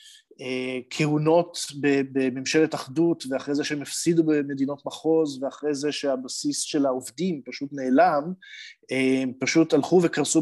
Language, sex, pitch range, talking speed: Hebrew, male, 135-180 Hz, 110 wpm